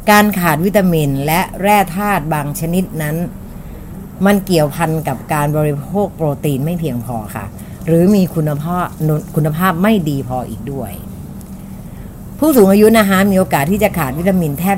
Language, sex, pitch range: Thai, female, 145-190 Hz